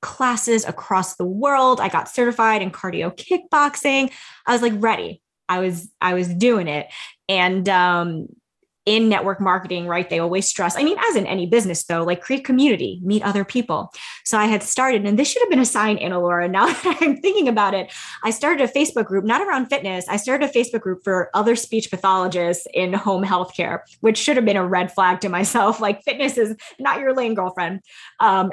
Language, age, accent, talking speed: English, 20-39, American, 205 wpm